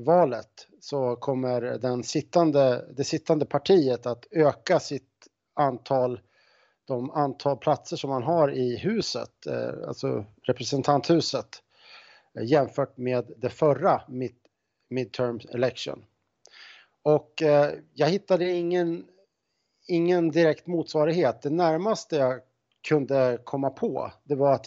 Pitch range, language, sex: 125-150 Hz, Swedish, male